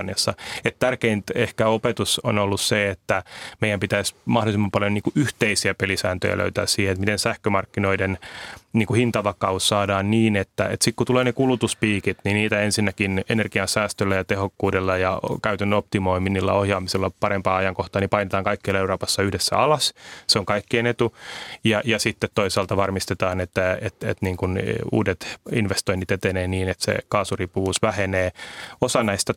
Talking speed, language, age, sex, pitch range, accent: 145 wpm, Finnish, 30-49, male, 95-110 Hz, native